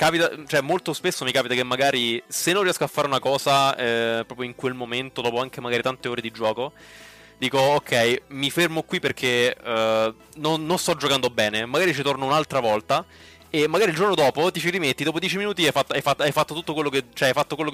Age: 20-39